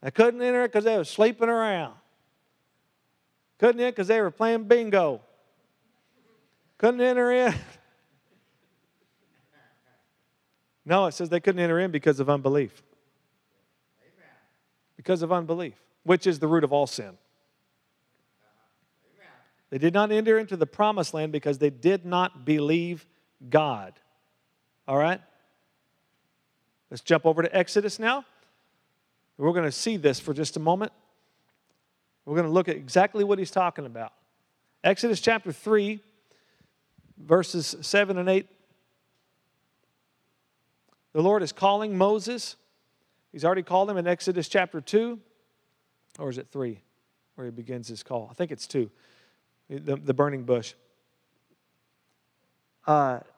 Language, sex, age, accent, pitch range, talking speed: English, male, 50-69, American, 145-205 Hz, 135 wpm